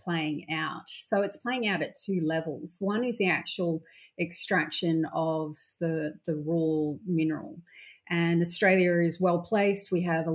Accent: Australian